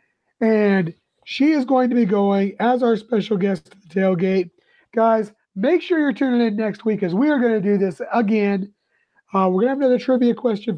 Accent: American